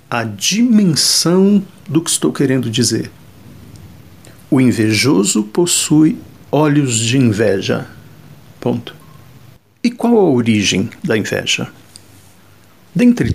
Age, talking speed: 60-79, 95 wpm